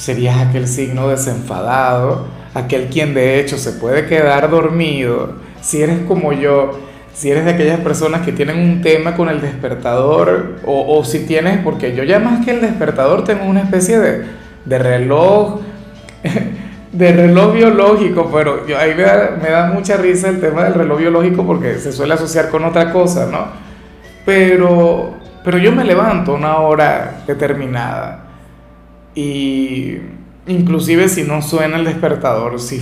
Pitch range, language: 135-175 Hz, Spanish